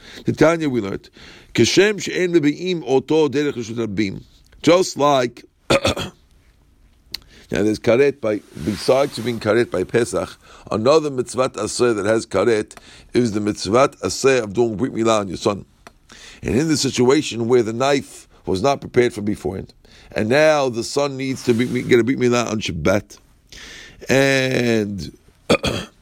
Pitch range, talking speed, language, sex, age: 115-150 Hz, 135 wpm, English, male, 50-69